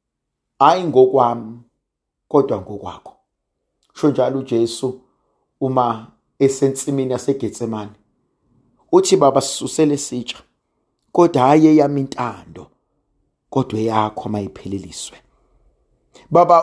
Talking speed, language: 75 wpm, English